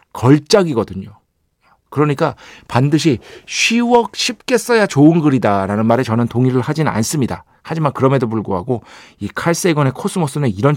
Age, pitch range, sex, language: 40-59, 105-160 Hz, male, Korean